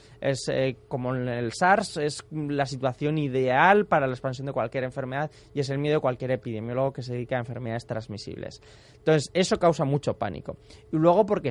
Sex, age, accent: male, 20-39, Spanish